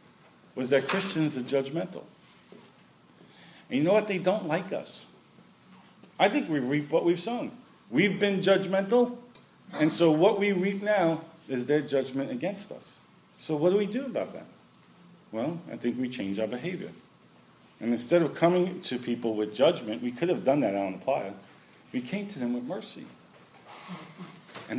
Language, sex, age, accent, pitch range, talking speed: English, male, 40-59, American, 125-185 Hz, 170 wpm